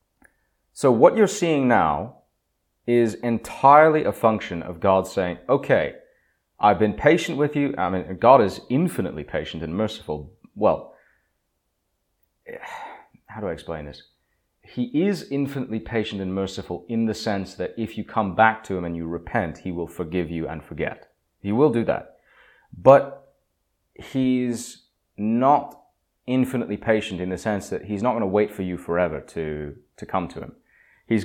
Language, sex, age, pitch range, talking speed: English, male, 30-49, 90-125 Hz, 160 wpm